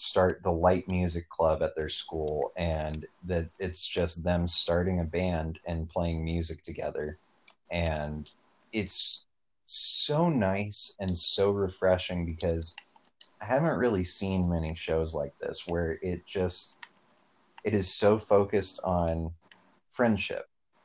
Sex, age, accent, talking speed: male, 30-49, American, 130 wpm